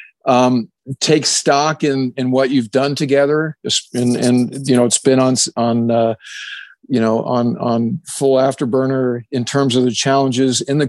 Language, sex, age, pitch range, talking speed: English, male, 50-69, 130-145 Hz, 170 wpm